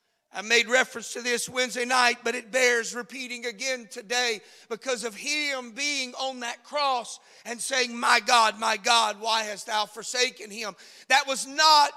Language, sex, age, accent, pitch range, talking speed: English, male, 40-59, American, 235-280 Hz, 170 wpm